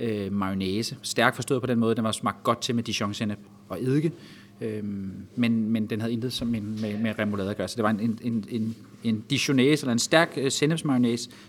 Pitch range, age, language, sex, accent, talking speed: 105-130 Hz, 30-49, Danish, male, native, 210 wpm